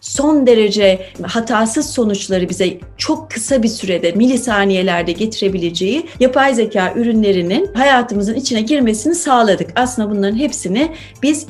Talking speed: 115 wpm